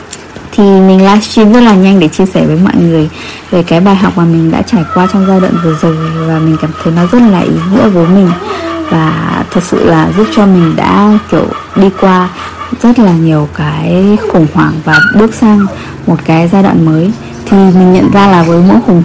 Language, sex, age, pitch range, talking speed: Vietnamese, female, 20-39, 170-215 Hz, 220 wpm